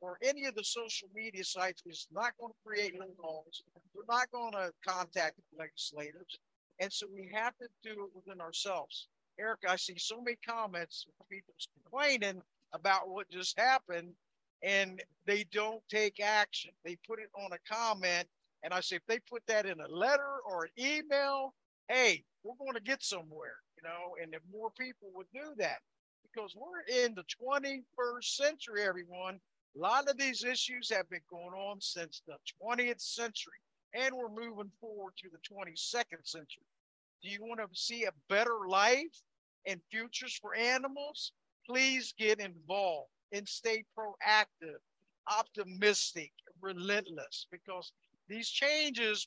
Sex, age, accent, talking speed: male, 60-79, American, 160 wpm